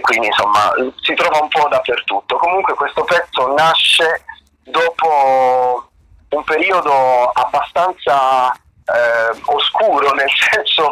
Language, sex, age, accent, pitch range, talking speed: Italian, male, 30-49, native, 120-170 Hz, 110 wpm